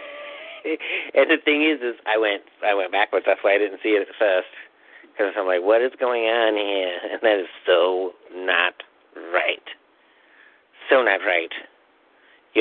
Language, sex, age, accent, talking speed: English, male, 50-69, American, 170 wpm